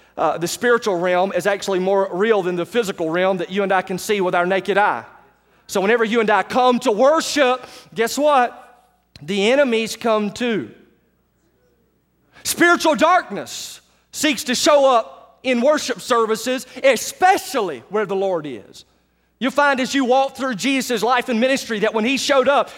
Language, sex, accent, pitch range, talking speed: English, male, American, 210-275 Hz, 170 wpm